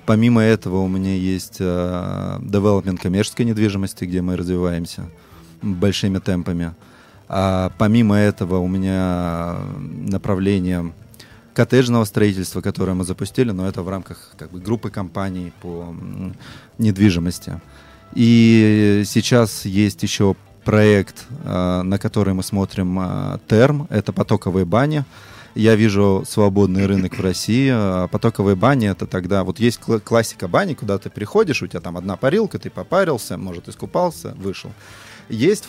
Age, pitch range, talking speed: 20-39, 95-115 Hz, 125 wpm